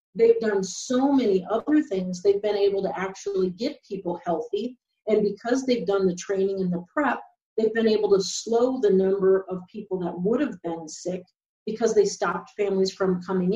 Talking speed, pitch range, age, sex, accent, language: 190 wpm, 190-235 Hz, 40-59, female, American, English